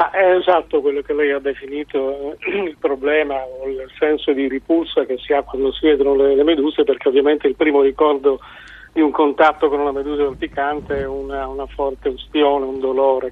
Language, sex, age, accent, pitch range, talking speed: Italian, male, 40-59, native, 135-155 Hz, 200 wpm